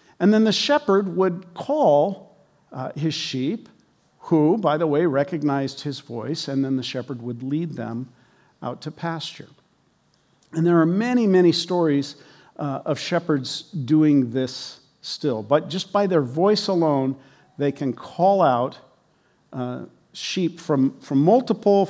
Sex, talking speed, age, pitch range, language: male, 145 wpm, 50-69, 130-175 Hz, English